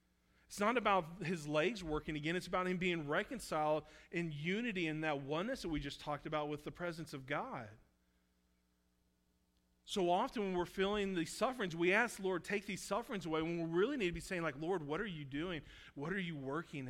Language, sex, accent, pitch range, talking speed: English, male, American, 115-165 Hz, 210 wpm